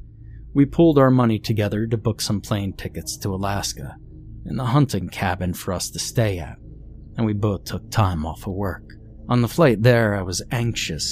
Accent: American